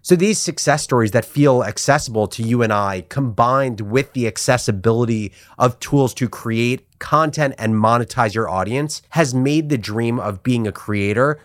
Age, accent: 30-49, American